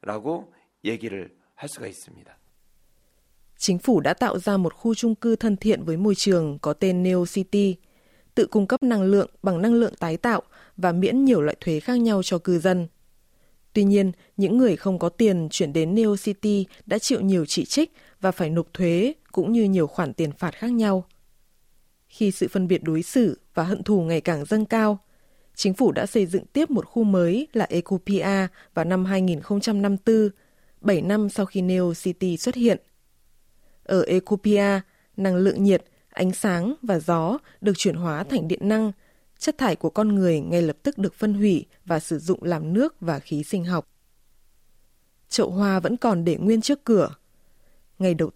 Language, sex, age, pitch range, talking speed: Vietnamese, female, 20-39, 175-215 Hz, 180 wpm